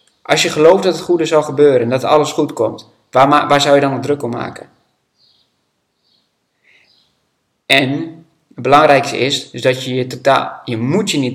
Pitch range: 120-140 Hz